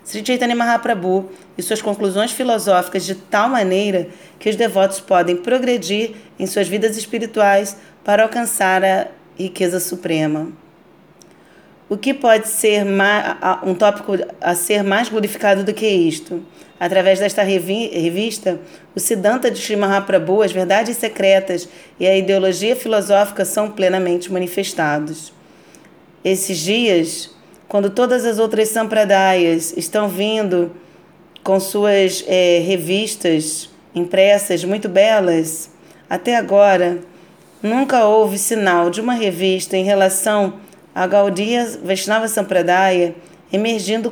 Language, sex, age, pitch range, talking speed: Portuguese, female, 30-49, 180-215 Hz, 115 wpm